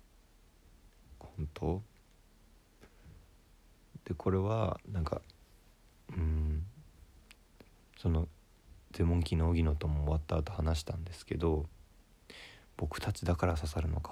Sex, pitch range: male, 80-105 Hz